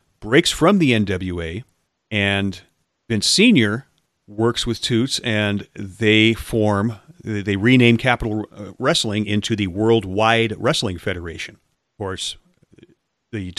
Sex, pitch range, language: male, 100-120 Hz, English